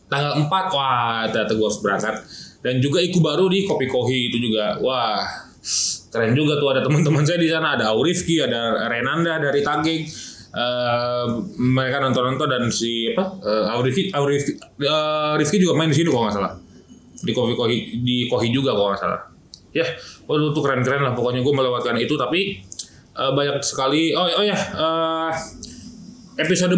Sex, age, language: male, 20-39, Indonesian